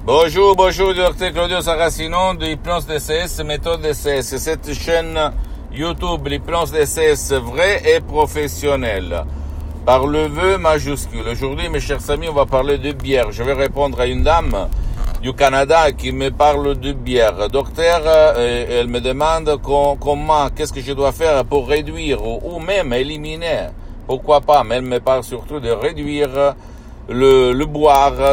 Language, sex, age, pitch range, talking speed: Italian, male, 60-79, 120-150 Hz, 150 wpm